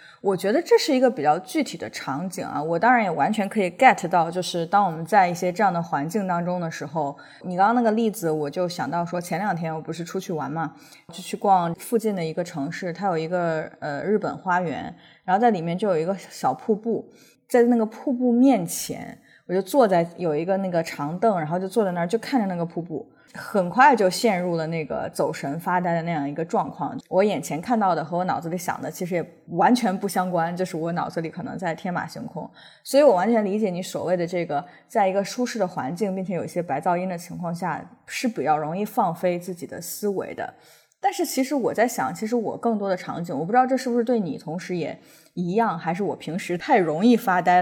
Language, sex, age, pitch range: Chinese, female, 20-39, 170-225 Hz